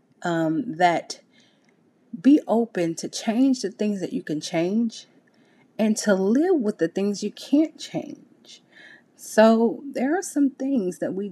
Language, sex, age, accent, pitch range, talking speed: English, female, 30-49, American, 185-250 Hz, 150 wpm